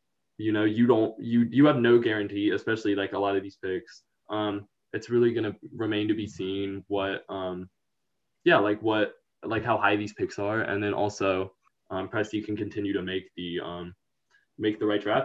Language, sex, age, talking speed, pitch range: English, male, 20-39, 195 wpm, 95-110 Hz